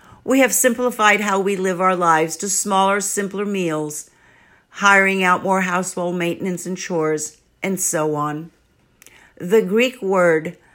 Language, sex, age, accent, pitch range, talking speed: English, female, 50-69, American, 175-215 Hz, 140 wpm